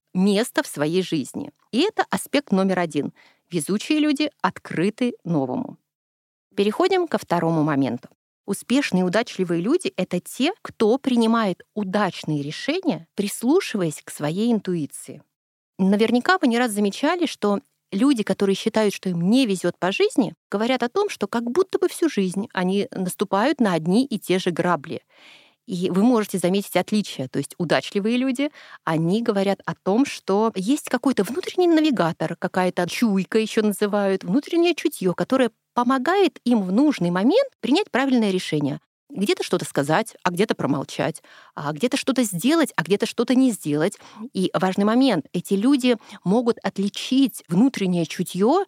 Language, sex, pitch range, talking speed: Russian, female, 180-255 Hz, 150 wpm